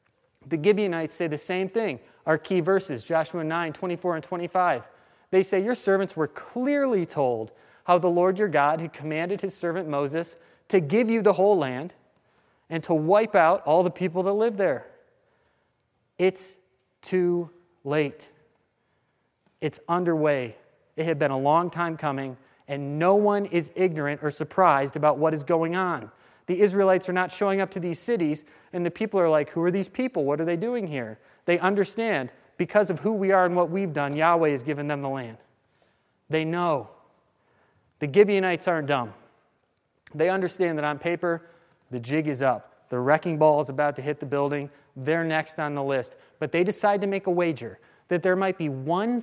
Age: 30-49